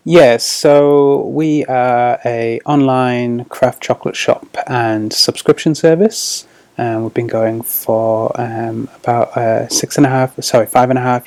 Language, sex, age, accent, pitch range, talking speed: English, male, 30-49, British, 115-130 Hz, 160 wpm